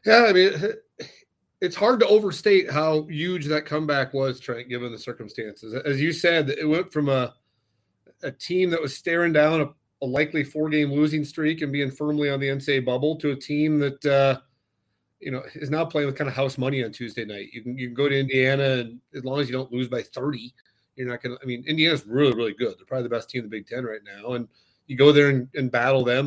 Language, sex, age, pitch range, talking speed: English, male, 30-49, 125-150 Hz, 240 wpm